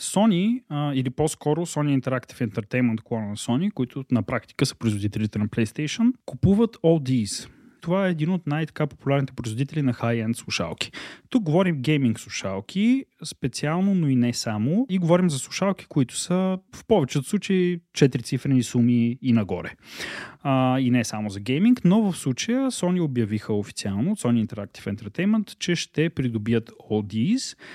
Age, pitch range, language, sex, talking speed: 30-49, 115-155 Hz, Bulgarian, male, 150 wpm